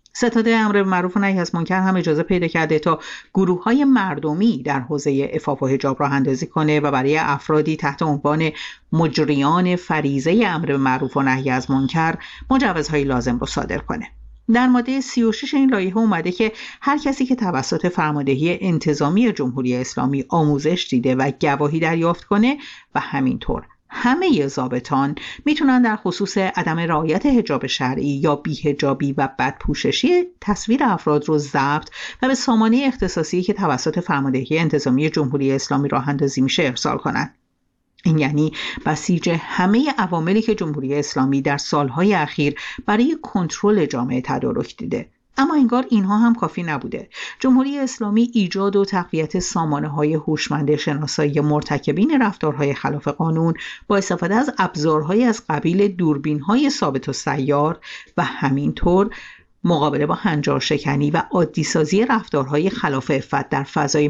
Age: 50-69